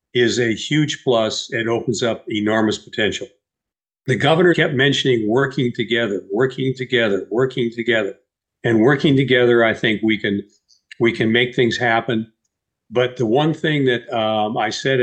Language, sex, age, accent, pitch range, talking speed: English, male, 50-69, American, 110-130 Hz, 150 wpm